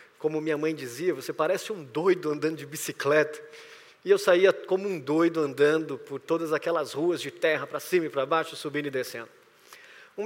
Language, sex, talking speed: Portuguese, male, 195 wpm